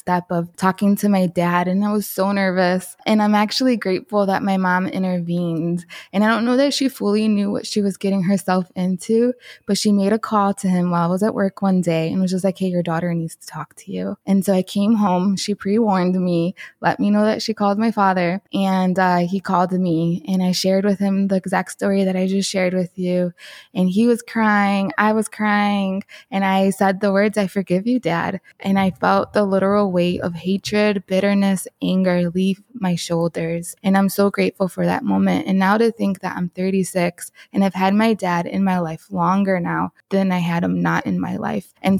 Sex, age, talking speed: female, 20-39, 225 wpm